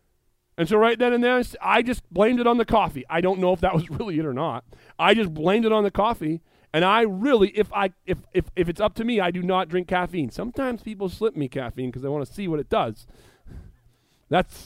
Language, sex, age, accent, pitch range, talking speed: English, male, 30-49, American, 160-235 Hz, 250 wpm